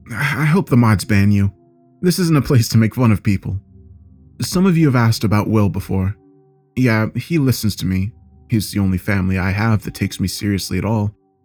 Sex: male